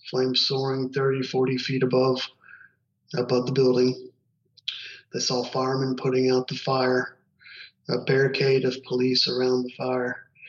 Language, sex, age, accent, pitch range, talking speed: English, male, 30-49, American, 125-135 Hz, 130 wpm